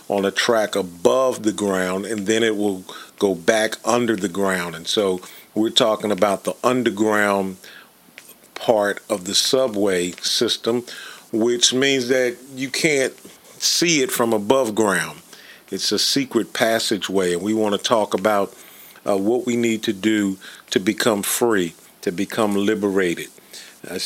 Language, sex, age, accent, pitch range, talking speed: English, male, 50-69, American, 100-120 Hz, 150 wpm